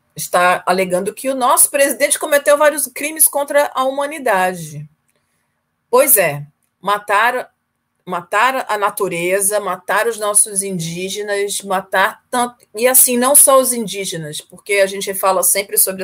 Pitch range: 170-210 Hz